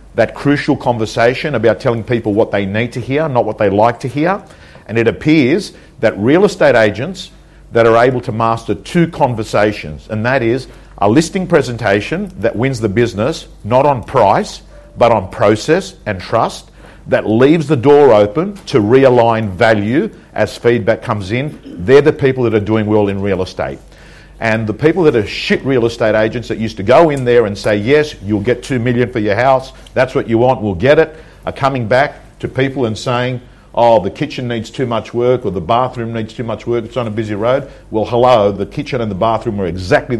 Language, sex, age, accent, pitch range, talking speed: English, male, 50-69, Australian, 105-130 Hz, 205 wpm